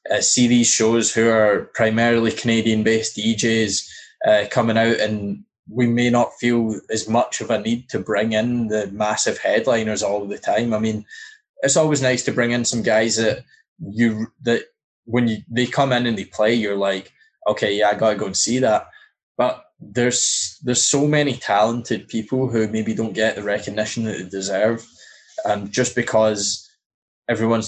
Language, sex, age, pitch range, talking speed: English, male, 10-29, 105-120 Hz, 185 wpm